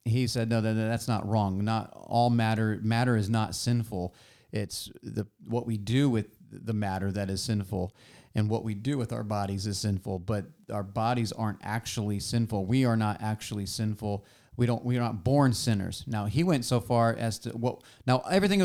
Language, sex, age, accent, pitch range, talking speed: English, male, 40-59, American, 105-125 Hz, 195 wpm